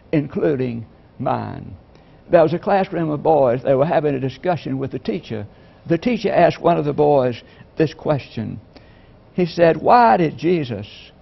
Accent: American